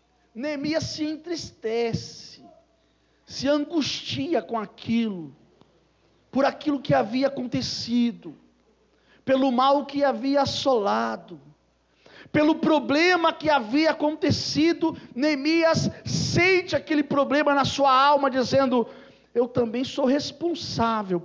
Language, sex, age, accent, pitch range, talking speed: Portuguese, male, 50-69, Brazilian, 245-300 Hz, 95 wpm